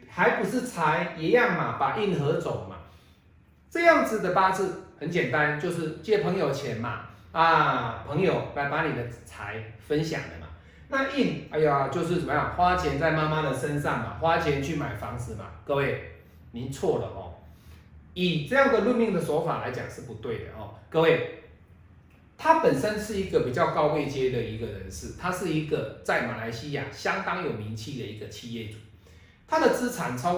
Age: 30-49